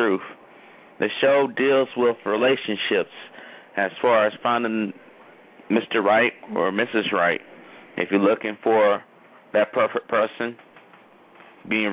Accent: American